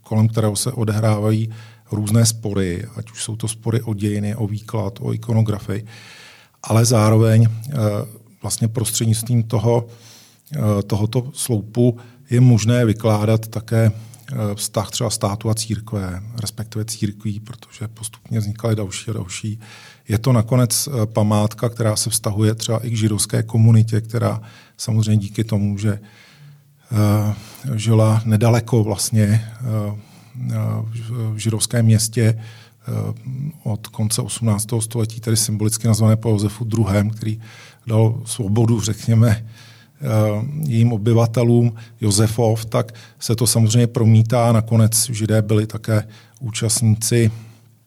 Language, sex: Czech, male